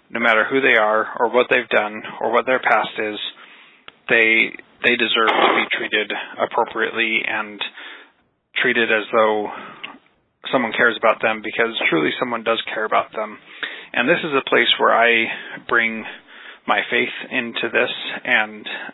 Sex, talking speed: male, 155 wpm